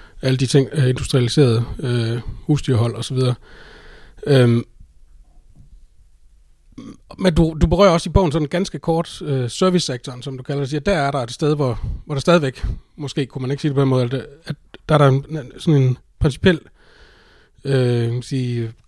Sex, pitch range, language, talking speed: male, 125-150 Hz, Danish, 175 wpm